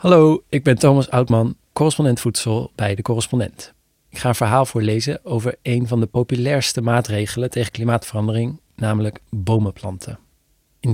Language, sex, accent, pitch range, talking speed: Dutch, male, Dutch, 105-125 Hz, 145 wpm